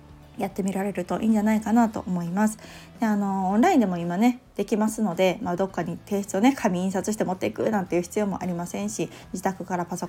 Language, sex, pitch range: Japanese, female, 175-220 Hz